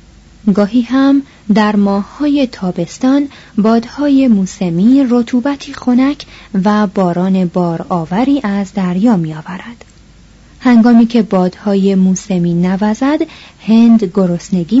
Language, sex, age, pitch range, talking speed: Persian, female, 30-49, 175-230 Hz, 95 wpm